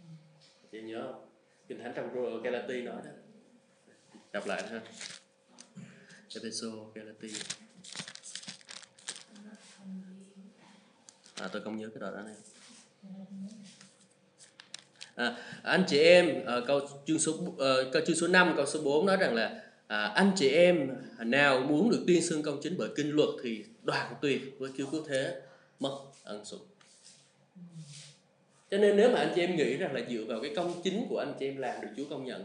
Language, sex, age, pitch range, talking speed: Vietnamese, male, 20-39, 130-180 Hz, 150 wpm